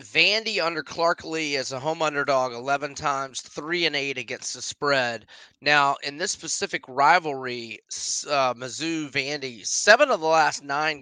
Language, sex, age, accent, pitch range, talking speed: English, male, 30-49, American, 125-145 Hz, 160 wpm